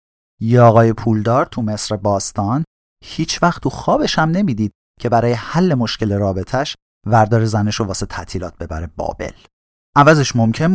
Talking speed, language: 145 wpm, Persian